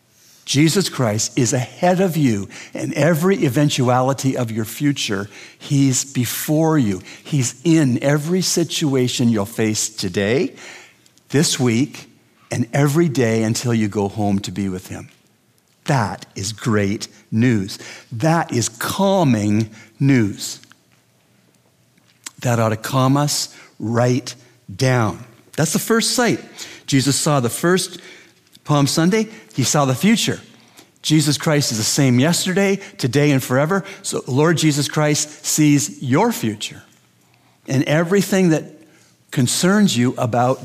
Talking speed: 125 wpm